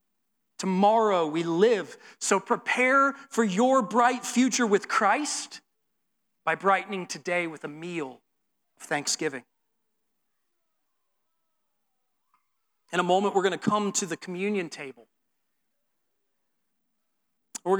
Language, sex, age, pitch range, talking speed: English, male, 40-59, 195-245 Hz, 105 wpm